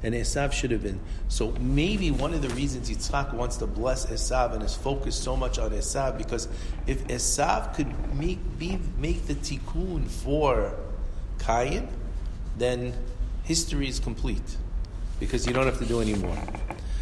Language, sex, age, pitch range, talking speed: English, male, 50-69, 95-125 Hz, 160 wpm